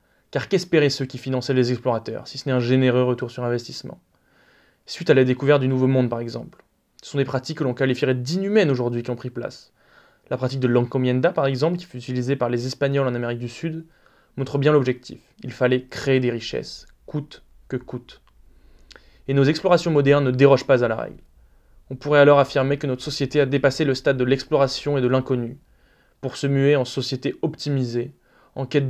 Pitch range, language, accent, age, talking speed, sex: 125-145 Hz, French, French, 20-39, 205 wpm, male